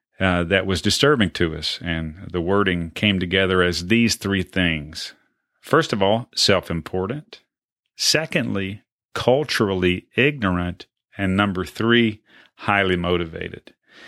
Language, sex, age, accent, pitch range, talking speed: English, male, 40-59, American, 90-110 Hz, 115 wpm